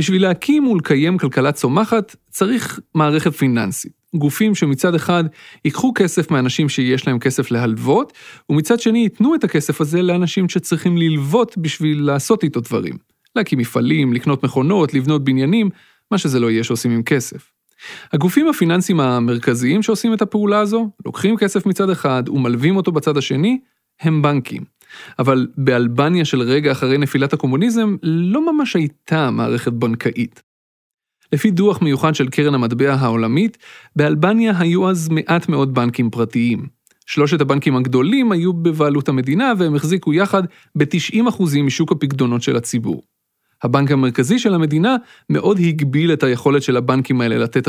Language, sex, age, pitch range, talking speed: Hebrew, male, 30-49, 130-185 Hz, 140 wpm